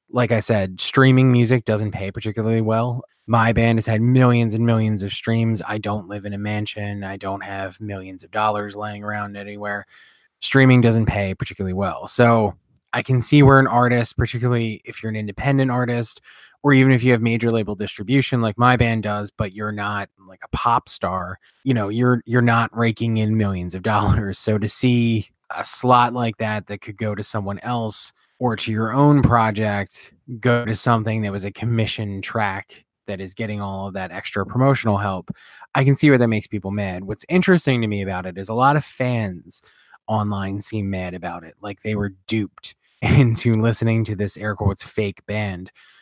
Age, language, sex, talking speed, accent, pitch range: 20-39, English, male, 195 wpm, American, 100-120 Hz